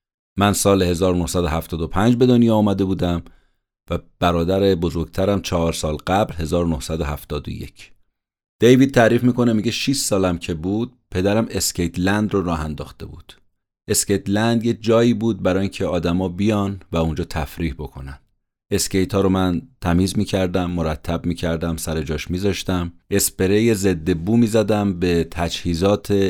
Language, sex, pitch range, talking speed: Persian, male, 85-110 Hz, 130 wpm